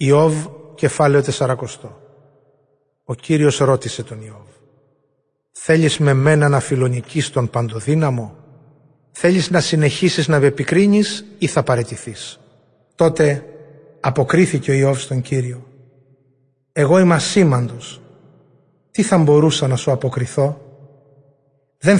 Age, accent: 30-49, native